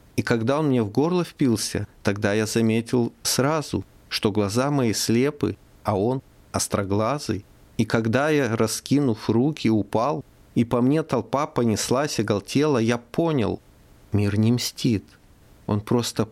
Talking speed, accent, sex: 135 wpm, native, male